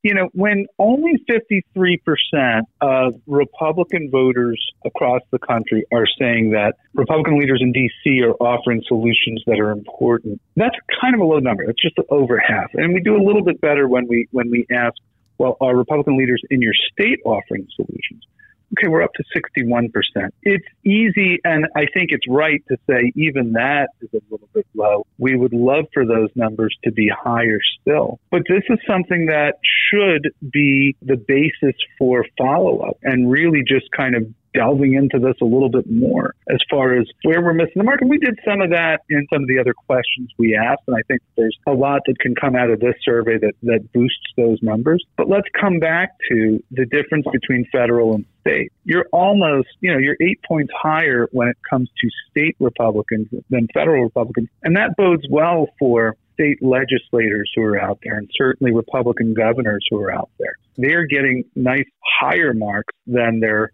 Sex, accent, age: male, American, 40-59